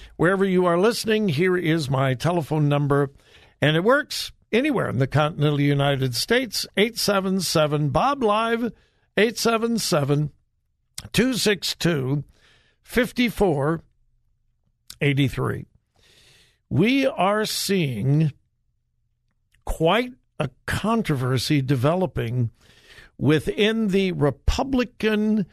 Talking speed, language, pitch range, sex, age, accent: 70 wpm, English, 140-210 Hz, male, 60-79, American